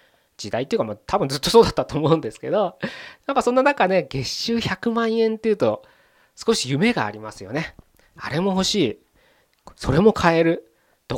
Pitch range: 115-185 Hz